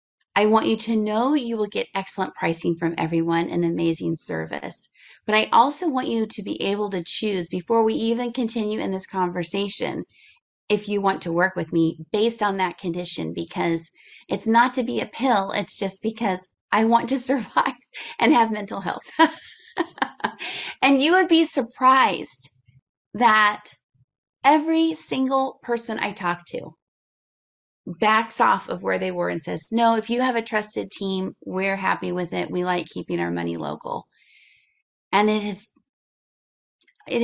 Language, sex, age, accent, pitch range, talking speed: English, female, 30-49, American, 175-235 Hz, 165 wpm